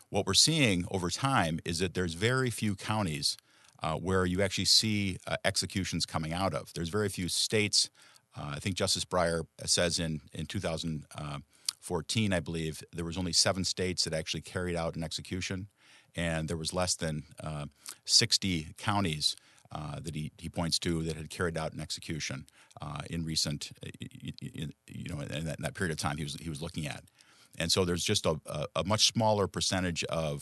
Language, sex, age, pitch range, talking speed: English, male, 50-69, 80-100 Hz, 185 wpm